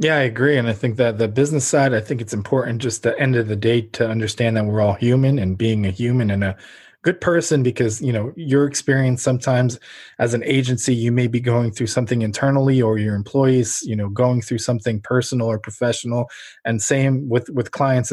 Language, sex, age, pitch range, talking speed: English, male, 20-39, 115-135 Hz, 220 wpm